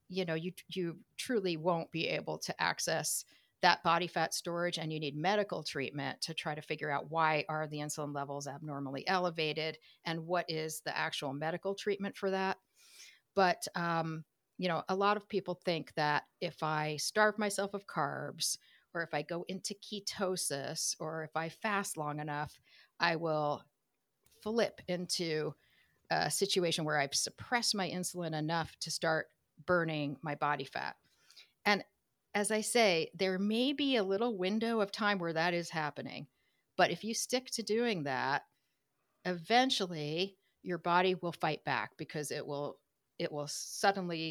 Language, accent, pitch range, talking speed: English, American, 155-190 Hz, 165 wpm